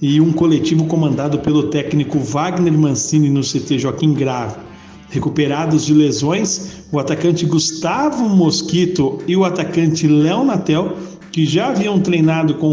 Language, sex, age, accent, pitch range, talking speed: Portuguese, male, 50-69, Brazilian, 145-170 Hz, 135 wpm